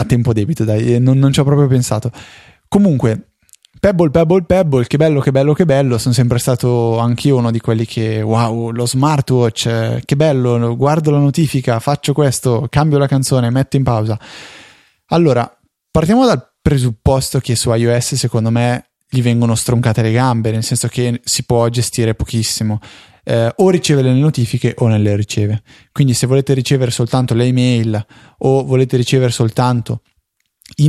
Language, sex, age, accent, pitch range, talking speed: Italian, male, 20-39, native, 115-135 Hz, 170 wpm